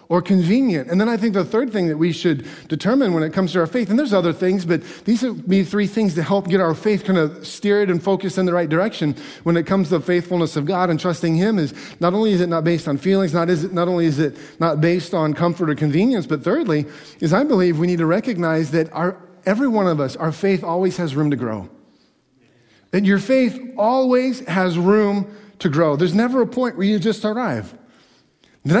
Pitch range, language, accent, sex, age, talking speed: 165-215 Hz, English, American, male, 30-49, 240 wpm